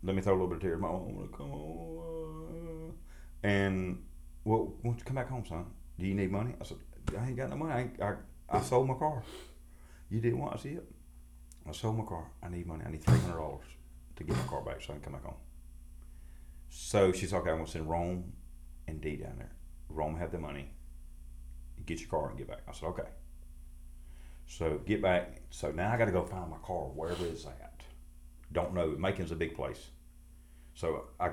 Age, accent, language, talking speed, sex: 40-59, American, English, 215 wpm, male